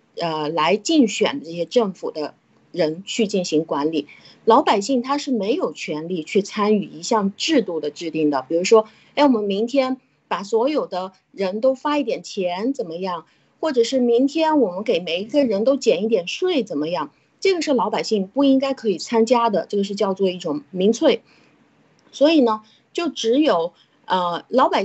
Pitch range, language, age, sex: 180-265 Hz, Chinese, 30-49, female